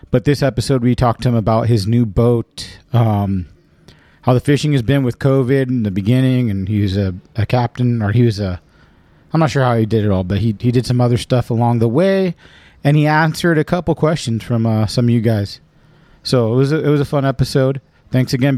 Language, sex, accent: English, male, American